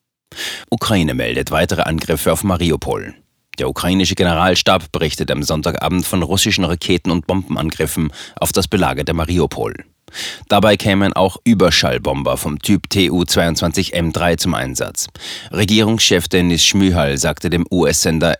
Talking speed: 115 wpm